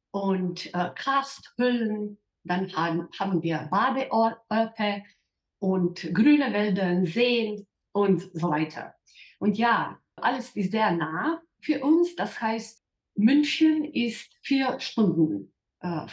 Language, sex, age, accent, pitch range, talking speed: German, female, 50-69, German, 180-245 Hz, 110 wpm